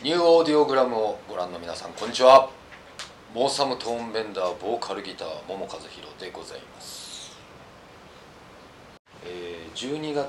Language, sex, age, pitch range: Japanese, male, 40-59, 100-135 Hz